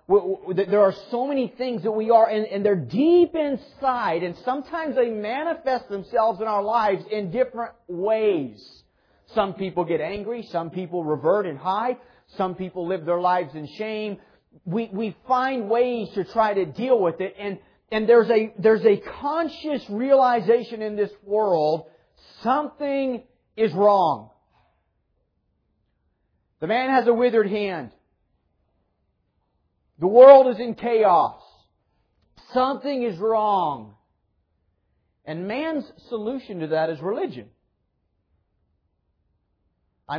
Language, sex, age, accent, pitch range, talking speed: English, male, 40-59, American, 165-245 Hz, 120 wpm